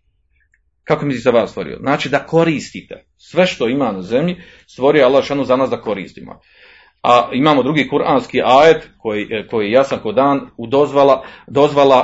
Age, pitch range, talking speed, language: 40-59, 130-195 Hz, 165 wpm, Croatian